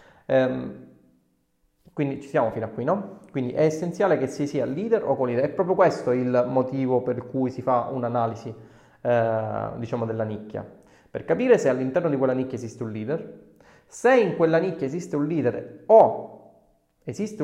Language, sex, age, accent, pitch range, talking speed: Italian, male, 30-49, native, 115-160 Hz, 170 wpm